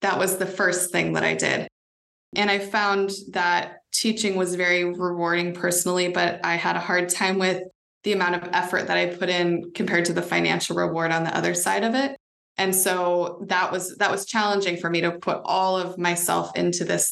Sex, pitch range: female, 165-195 Hz